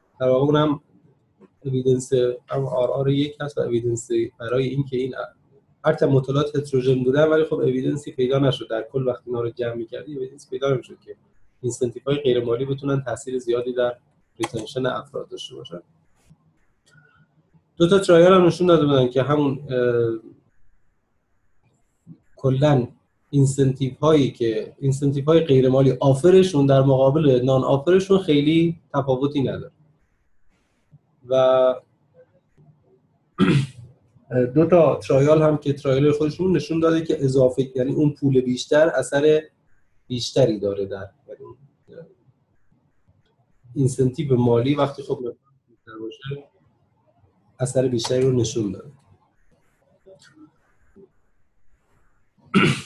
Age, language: 30-49, Persian